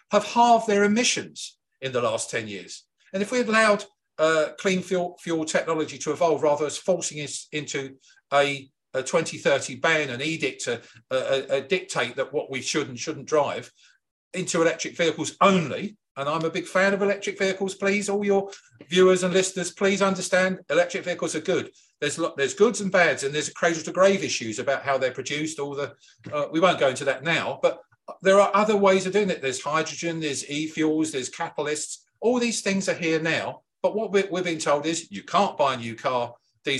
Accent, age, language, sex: British, 50-69, English, male